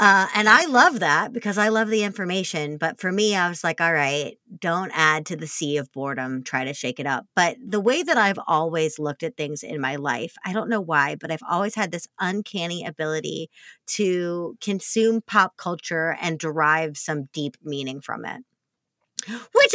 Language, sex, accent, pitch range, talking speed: English, female, American, 160-220 Hz, 200 wpm